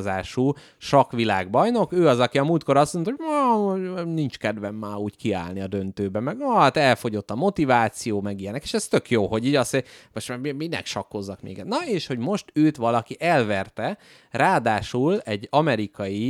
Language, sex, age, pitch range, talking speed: Hungarian, male, 30-49, 100-135 Hz, 170 wpm